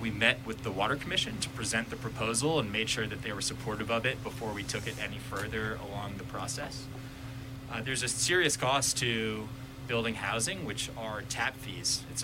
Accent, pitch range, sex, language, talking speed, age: American, 110-130 Hz, male, English, 200 wpm, 20-39